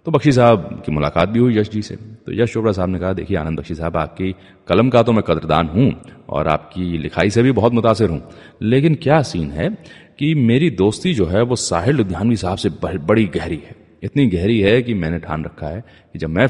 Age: 30-49